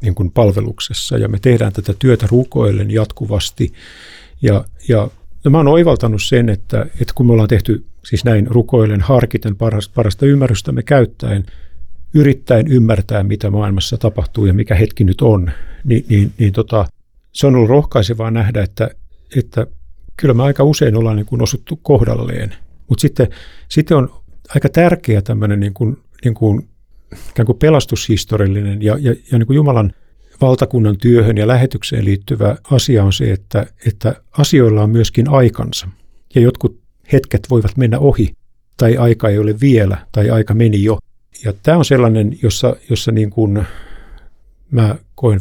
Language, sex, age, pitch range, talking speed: Finnish, male, 50-69, 100-125 Hz, 155 wpm